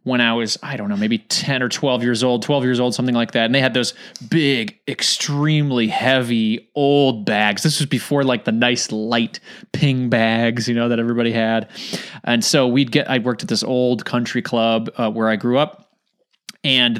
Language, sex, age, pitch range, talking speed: English, male, 20-39, 125-200 Hz, 205 wpm